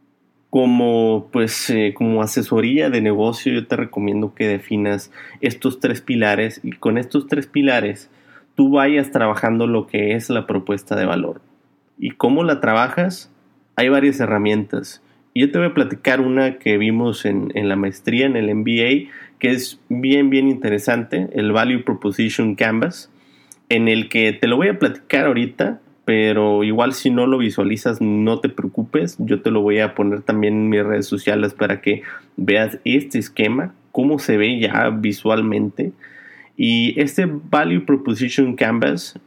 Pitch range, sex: 105-140 Hz, male